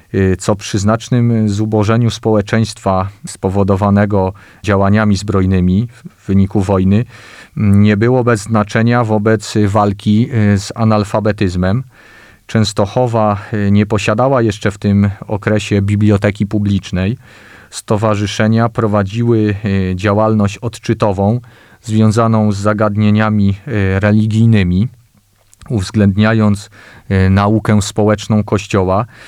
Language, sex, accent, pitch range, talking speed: Polish, male, native, 105-115 Hz, 80 wpm